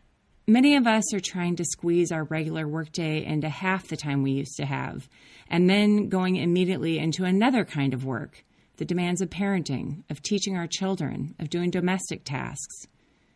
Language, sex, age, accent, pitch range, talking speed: English, female, 30-49, American, 150-195 Hz, 175 wpm